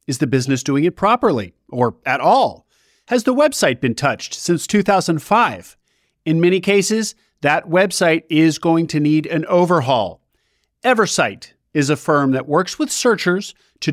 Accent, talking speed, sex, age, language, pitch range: American, 155 wpm, male, 50-69, English, 135-205 Hz